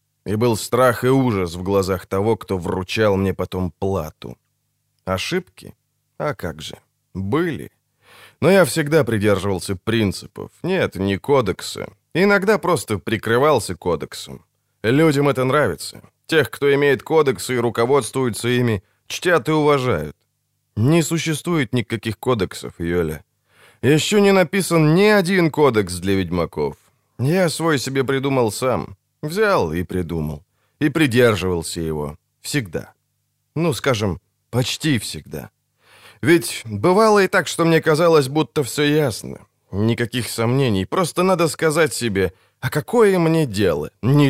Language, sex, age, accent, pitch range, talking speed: Ukrainian, male, 20-39, native, 105-155 Hz, 125 wpm